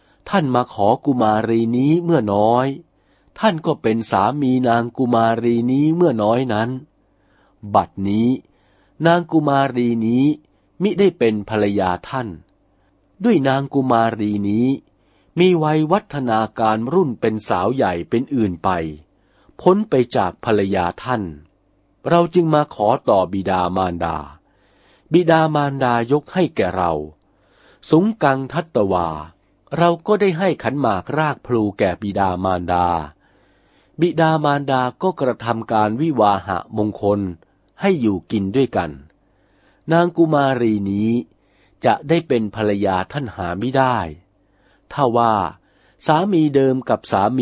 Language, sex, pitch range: Thai, male, 95-140 Hz